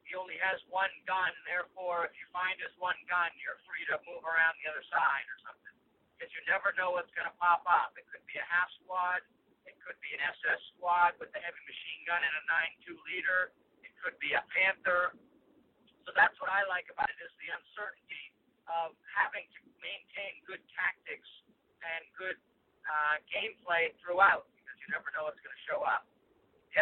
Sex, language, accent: male, English, American